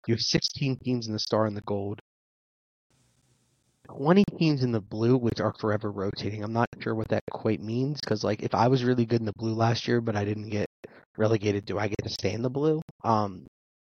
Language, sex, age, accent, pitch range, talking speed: English, male, 30-49, American, 105-130 Hz, 225 wpm